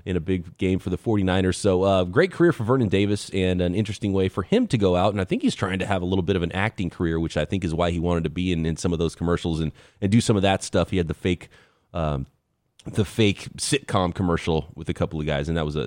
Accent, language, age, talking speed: American, English, 30-49, 290 wpm